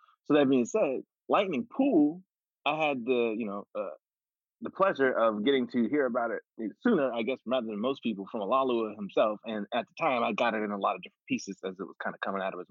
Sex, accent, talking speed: male, American, 245 wpm